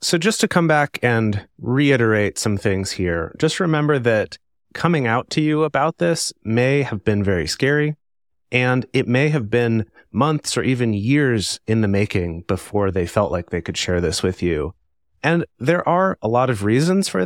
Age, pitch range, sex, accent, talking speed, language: 30-49, 100-135 Hz, male, American, 190 wpm, English